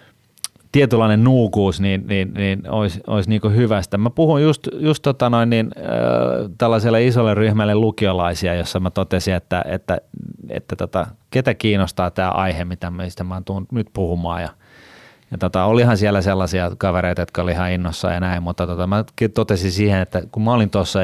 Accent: native